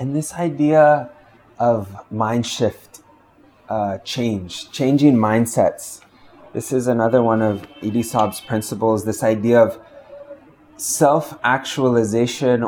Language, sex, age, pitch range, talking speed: English, male, 20-39, 110-130 Hz, 105 wpm